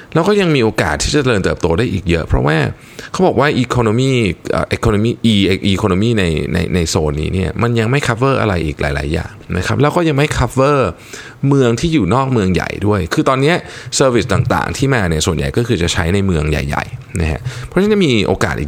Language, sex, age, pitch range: Thai, male, 20-39, 90-125 Hz